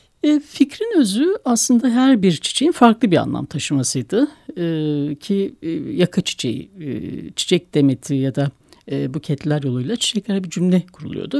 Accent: native